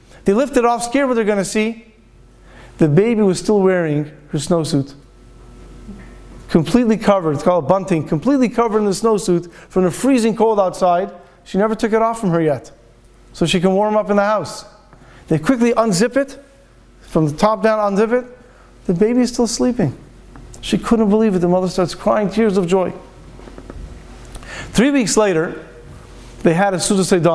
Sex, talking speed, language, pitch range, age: male, 175 wpm, English, 165-215 Hz, 40-59